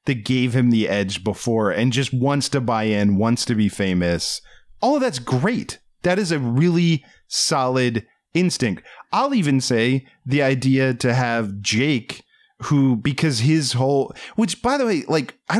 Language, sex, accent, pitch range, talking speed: English, male, American, 110-165 Hz, 170 wpm